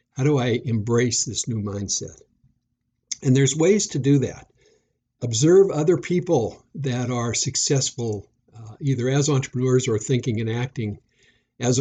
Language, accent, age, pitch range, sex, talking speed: English, American, 60-79, 115-140 Hz, male, 140 wpm